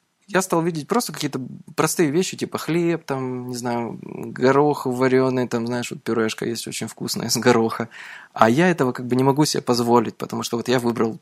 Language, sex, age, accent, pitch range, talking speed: Russian, male, 20-39, native, 120-160 Hz, 200 wpm